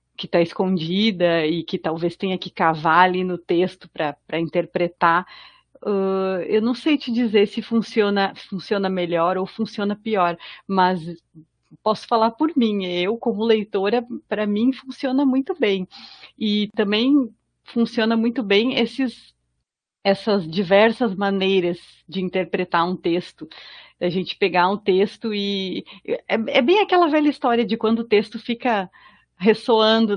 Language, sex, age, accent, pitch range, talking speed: Portuguese, female, 40-59, Brazilian, 185-235 Hz, 140 wpm